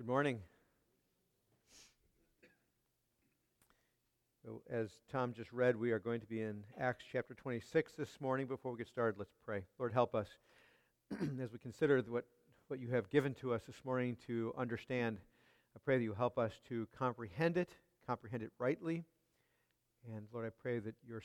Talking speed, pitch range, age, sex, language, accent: 165 wpm, 110-130 Hz, 50-69, male, English, American